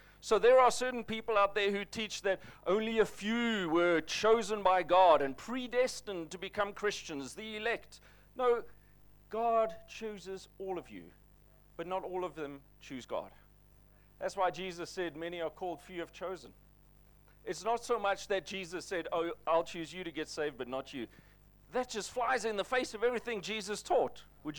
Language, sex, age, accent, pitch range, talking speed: English, male, 40-59, South African, 170-235 Hz, 185 wpm